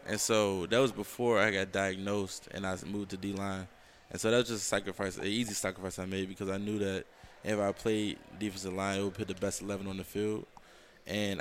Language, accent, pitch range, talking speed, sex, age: English, American, 95-110 Hz, 230 wpm, male, 20-39